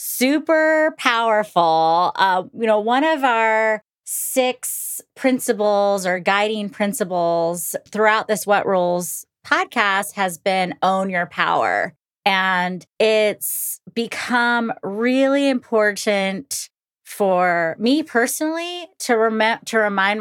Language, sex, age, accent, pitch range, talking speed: English, female, 30-49, American, 185-240 Hz, 105 wpm